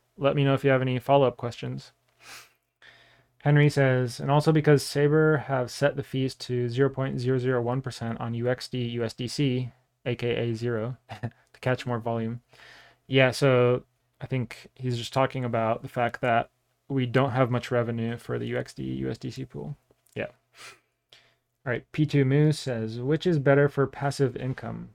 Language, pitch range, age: English, 120-135 Hz, 20-39